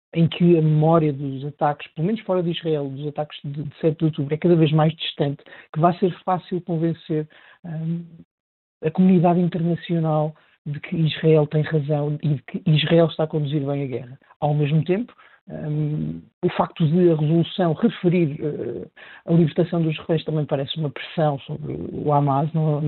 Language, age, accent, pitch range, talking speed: Portuguese, 50-69, Portuguese, 150-170 Hz, 180 wpm